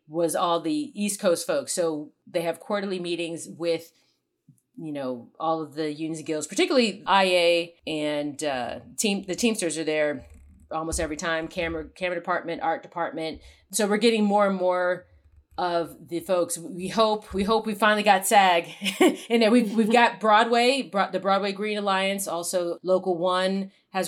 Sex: female